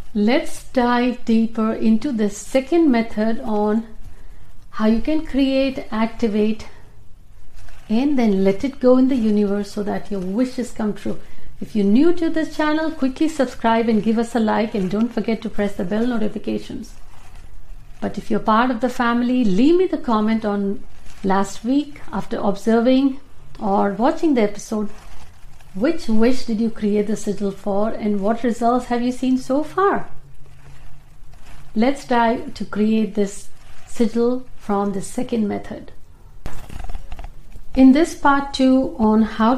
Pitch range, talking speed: 205-255 Hz, 150 wpm